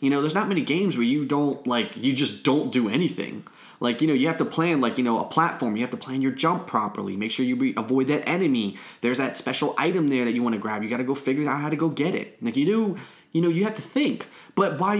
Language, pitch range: English, 130-165 Hz